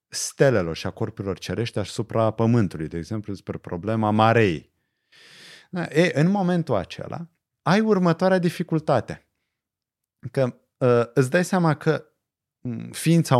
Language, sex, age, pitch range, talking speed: Romanian, male, 30-49, 110-155 Hz, 115 wpm